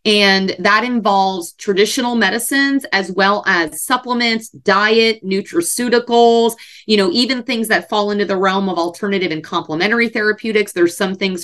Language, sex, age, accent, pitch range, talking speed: English, female, 30-49, American, 190-245 Hz, 145 wpm